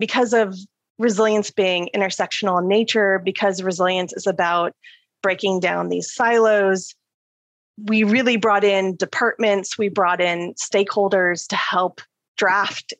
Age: 30-49